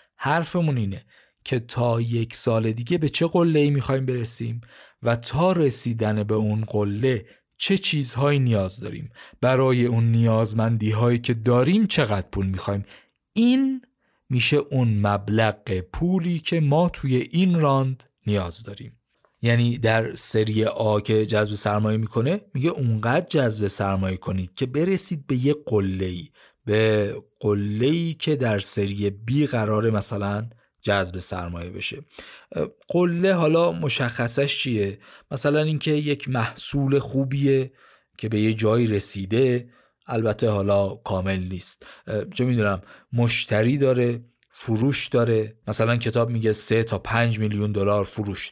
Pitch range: 105-140 Hz